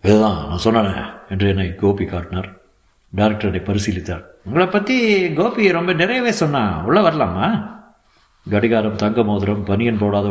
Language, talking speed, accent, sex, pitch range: Tamil, 130 wpm, native, male, 100-145 Hz